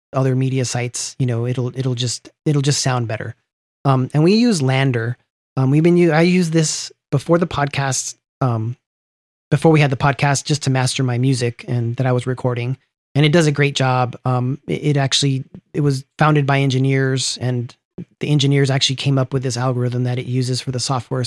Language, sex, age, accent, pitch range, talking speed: English, male, 30-49, American, 125-145 Hz, 205 wpm